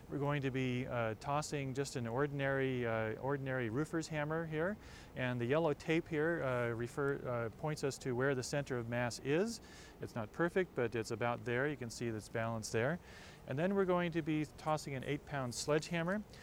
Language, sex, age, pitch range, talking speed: English, male, 40-59, 100-140 Hz, 195 wpm